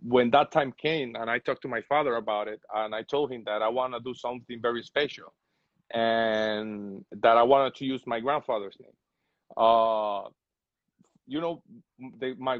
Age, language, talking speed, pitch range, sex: 30-49, English, 175 wpm, 110-140 Hz, male